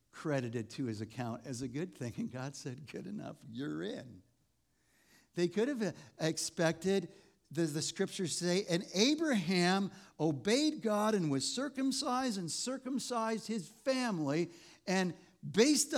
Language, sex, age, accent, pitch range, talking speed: English, male, 60-79, American, 130-185 Hz, 135 wpm